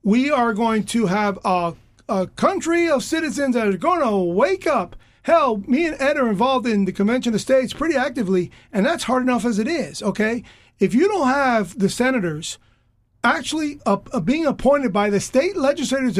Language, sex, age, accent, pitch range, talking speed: English, male, 40-59, American, 195-255 Hz, 195 wpm